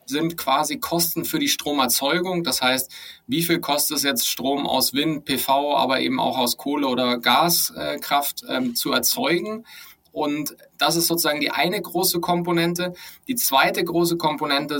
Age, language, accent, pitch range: 30-49, German, German, 130-170 Hz